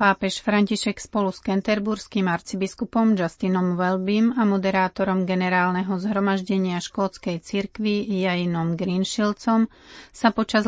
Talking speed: 100 wpm